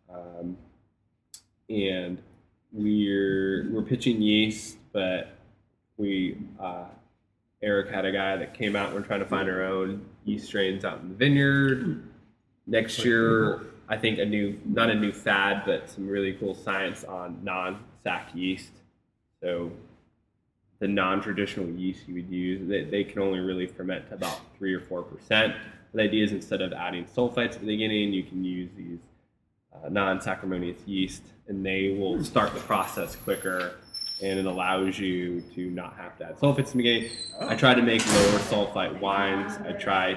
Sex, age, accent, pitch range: male, 20-39, American, 95-110 Hz